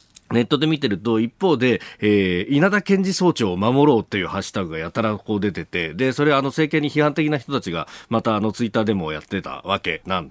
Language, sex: Japanese, male